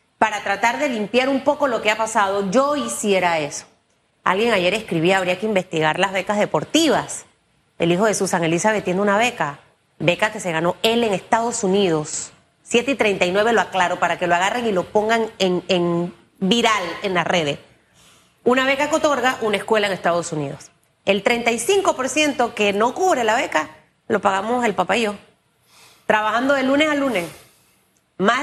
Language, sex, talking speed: Spanish, female, 175 wpm